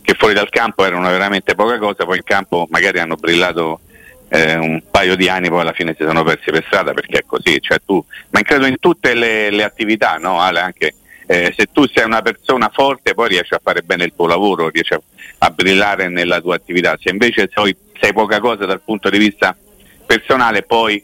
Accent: native